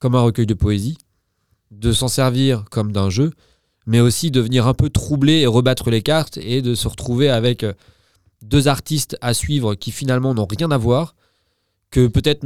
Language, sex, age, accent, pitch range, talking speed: French, male, 20-39, French, 100-130 Hz, 190 wpm